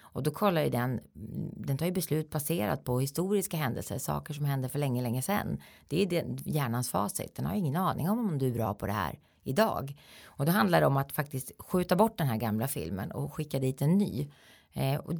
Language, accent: Swedish, native